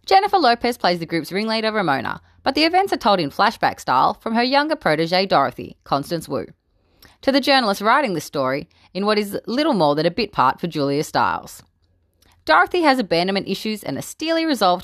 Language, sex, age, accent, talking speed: English, female, 30-49, Australian, 195 wpm